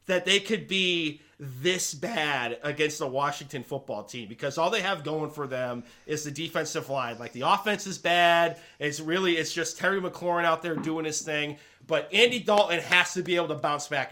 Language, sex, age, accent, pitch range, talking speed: English, male, 30-49, American, 145-185 Hz, 205 wpm